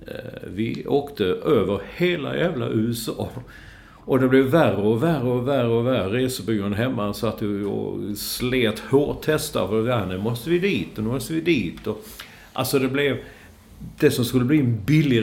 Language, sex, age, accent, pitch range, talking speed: English, male, 50-69, Swedish, 105-130 Hz, 175 wpm